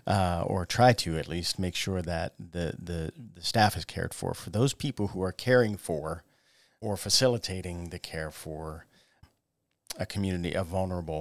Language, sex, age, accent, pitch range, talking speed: English, male, 40-59, American, 85-105 Hz, 170 wpm